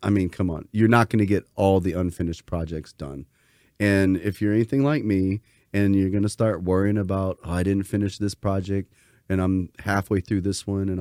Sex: male